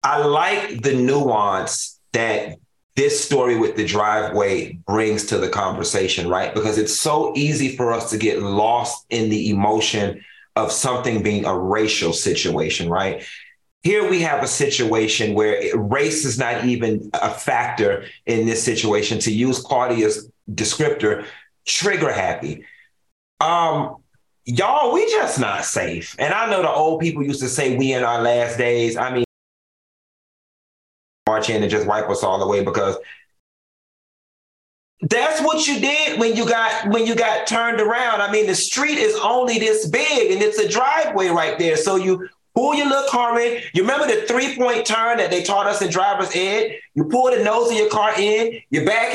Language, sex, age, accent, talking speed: English, male, 30-49, American, 170 wpm